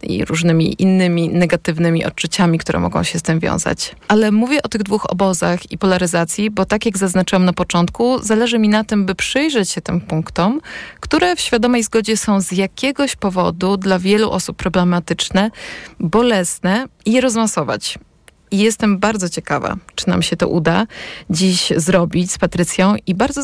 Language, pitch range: Polish, 175-220 Hz